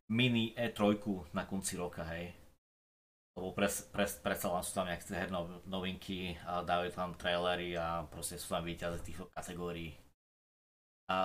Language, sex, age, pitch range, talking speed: Slovak, male, 20-39, 90-100 Hz, 145 wpm